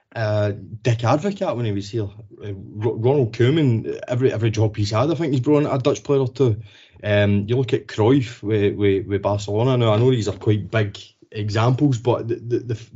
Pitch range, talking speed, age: 105-125 Hz, 200 wpm, 20-39